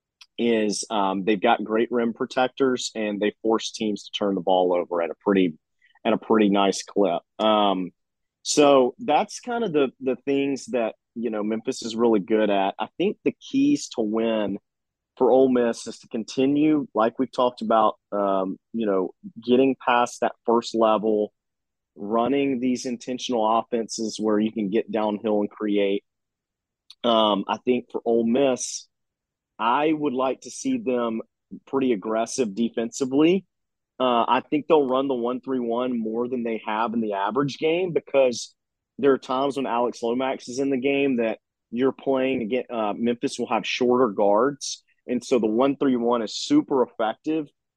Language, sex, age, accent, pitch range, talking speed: English, male, 30-49, American, 110-130 Hz, 170 wpm